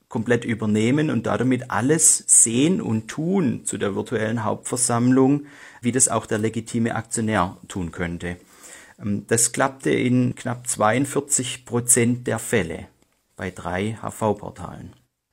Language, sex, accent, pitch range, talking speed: German, male, German, 105-130 Hz, 115 wpm